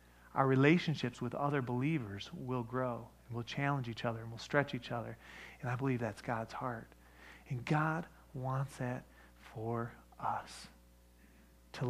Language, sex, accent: English, male, American